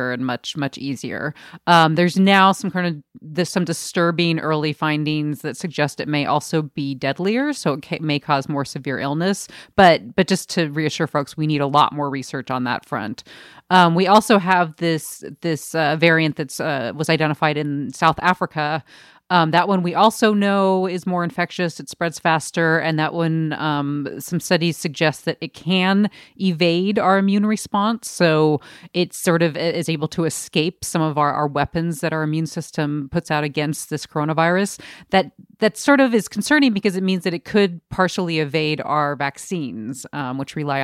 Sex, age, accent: female, 30-49, American